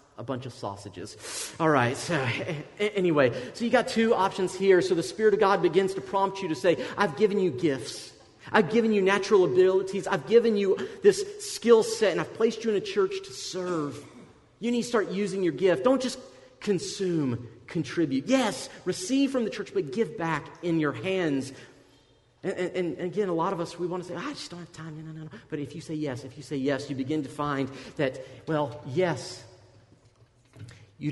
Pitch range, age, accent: 145-195 Hz, 40-59, American